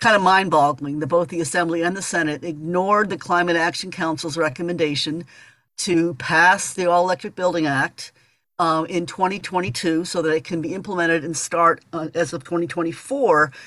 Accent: American